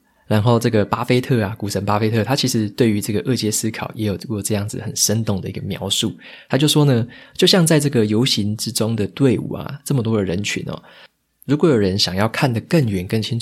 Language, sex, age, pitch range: Chinese, male, 20-39, 100-120 Hz